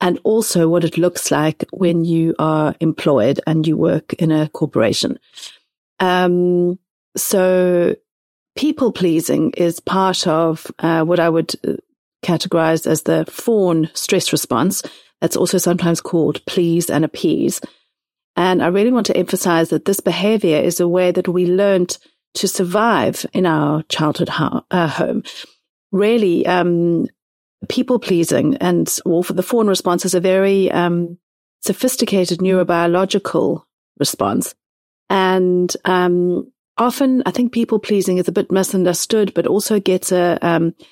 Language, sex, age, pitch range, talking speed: English, female, 40-59, 170-195 Hz, 140 wpm